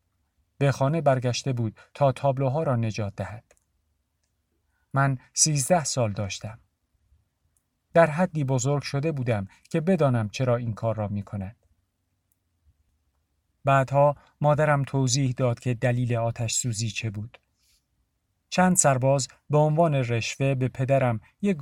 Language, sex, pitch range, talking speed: Persian, male, 105-140 Hz, 120 wpm